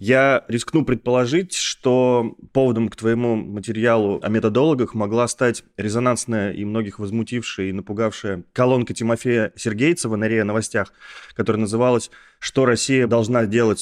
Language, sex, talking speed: Russian, male, 130 wpm